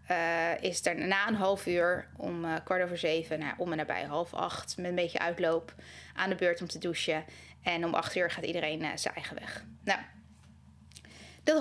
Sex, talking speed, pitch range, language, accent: female, 205 wpm, 170-250 Hz, Dutch, Dutch